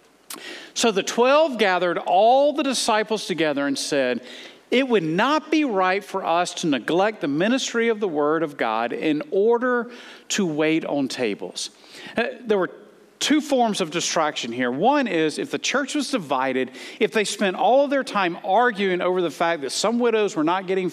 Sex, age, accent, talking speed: male, 50-69, American, 180 wpm